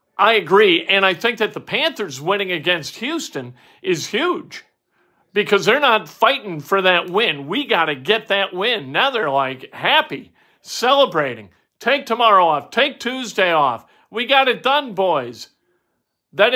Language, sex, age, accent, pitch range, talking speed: English, male, 50-69, American, 165-215 Hz, 155 wpm